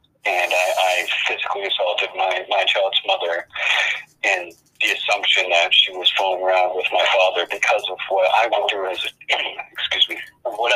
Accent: American